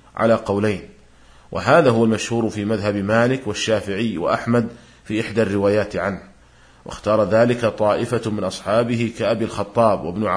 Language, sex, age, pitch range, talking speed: Arabic, male, 40-59, 105-120 Hz, 125 wpm